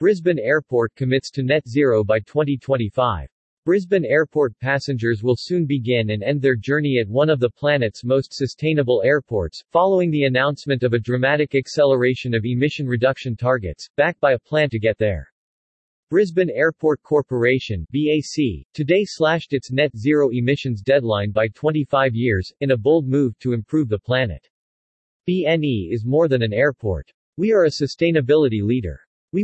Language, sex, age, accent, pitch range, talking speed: English, male, 40-59, American, 120-150 Hz, 160 wpm